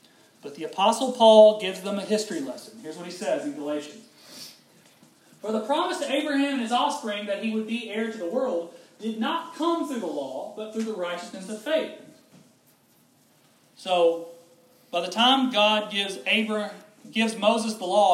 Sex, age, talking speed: male, 30-49, 175 wpm